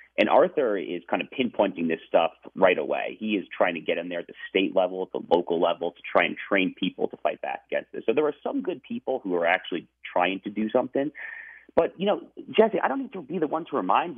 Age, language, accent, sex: 30-49, English, American, male